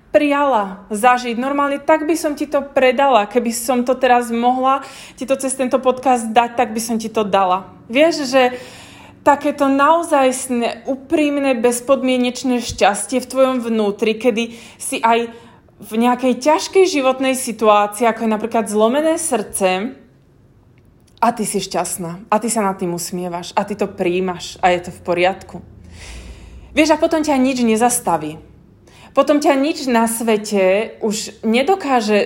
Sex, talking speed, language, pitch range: female, 150 wpm, Slovak, 210-270 Hz